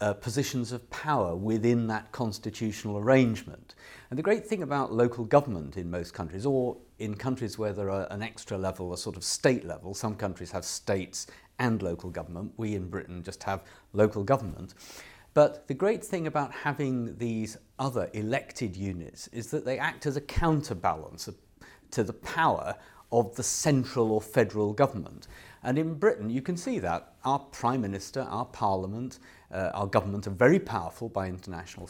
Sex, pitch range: male, 100-135 Hz